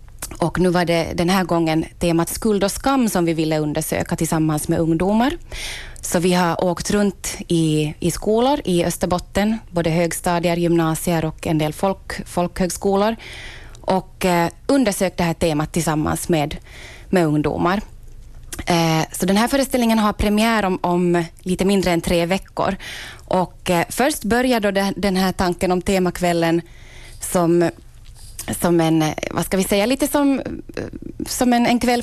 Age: 20-39